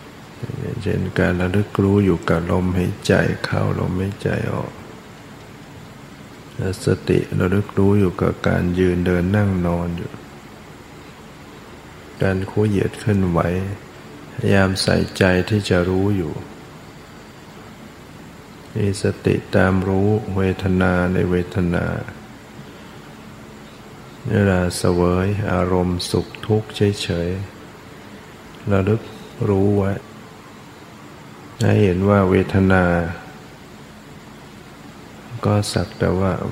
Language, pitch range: Thai, 85-100 Hz